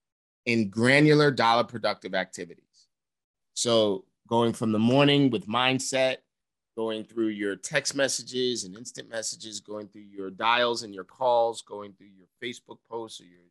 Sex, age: male, 30-49